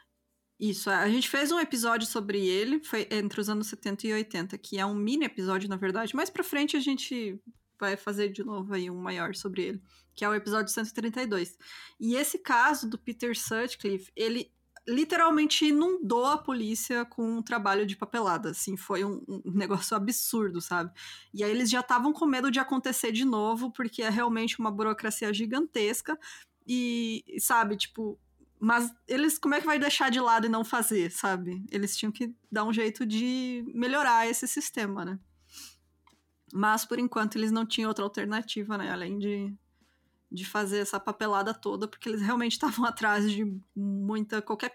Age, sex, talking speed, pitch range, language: 20-39, female, 175 wpm, 205-245 Hz, Portuguese